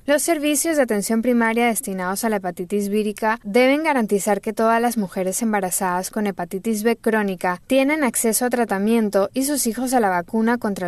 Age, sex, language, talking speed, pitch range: 10-29, female, Spanish, 175 wpm, 200-250 Hz